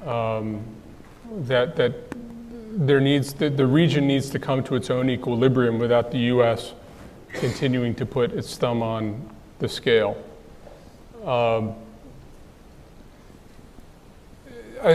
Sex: male